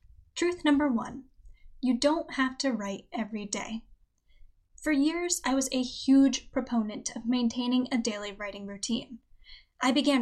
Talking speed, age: 145 wpm, 10-29